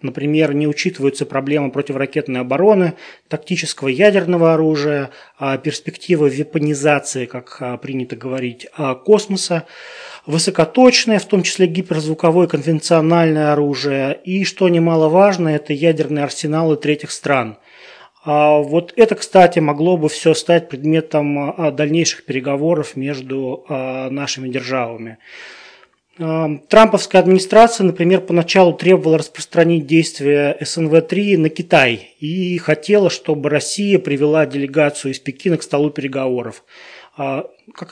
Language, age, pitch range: Russian, 20-39, 140-175 Hz